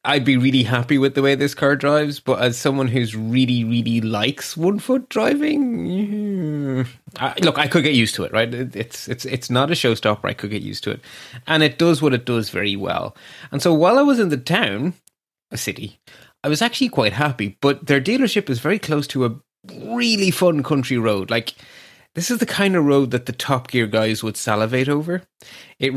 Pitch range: 120-160 Hz